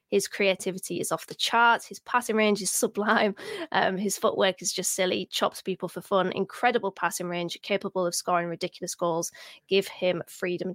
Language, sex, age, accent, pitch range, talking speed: English, female, 20-39, British, 180-215 Hz, 185 wpm